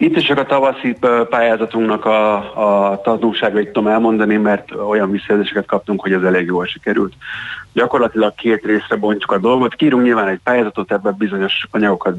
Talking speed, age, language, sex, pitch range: 165 wpm, 30-49, Hungarian, male, 95-110 Hz